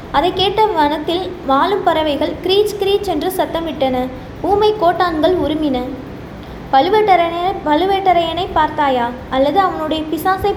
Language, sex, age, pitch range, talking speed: Tamil, female, 20-39, 300-365 Hz, 100 wpm